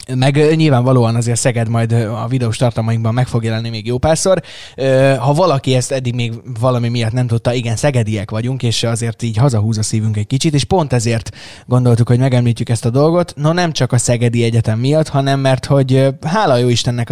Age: 20-39